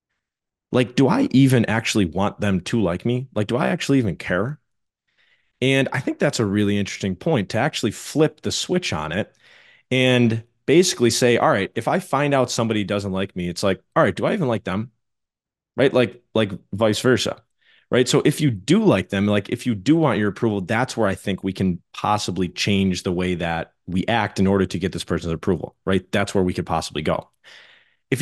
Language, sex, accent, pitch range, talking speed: English, male, American, 100-125 Hz, 215 wpm